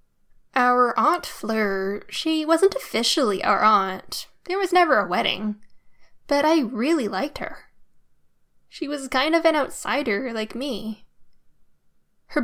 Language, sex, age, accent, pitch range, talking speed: English, female, 10-29, American, 220-265 Hz, 130 wpm